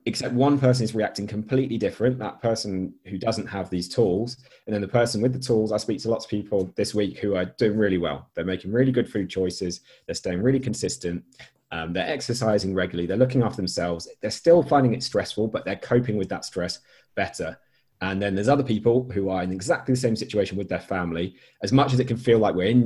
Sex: male